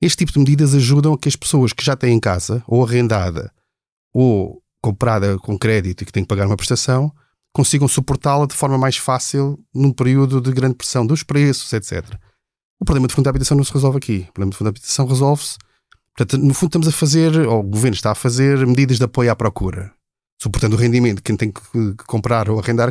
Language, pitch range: Portuguese, 115-145 Hz